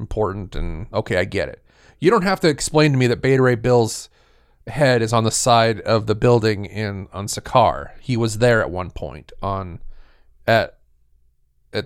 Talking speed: 185 wpm